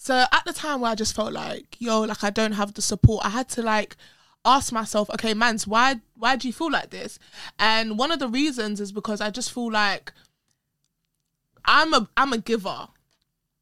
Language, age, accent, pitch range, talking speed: English, 20-39, British, 205-240 Hz, 205 wpm